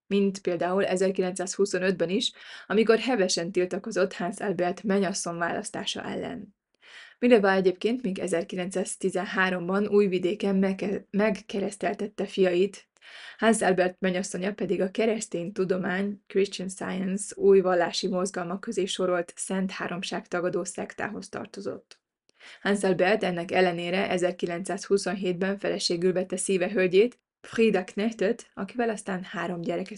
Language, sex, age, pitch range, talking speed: Hungarian, female, 20-39, 185-210 Hz, 105 wpm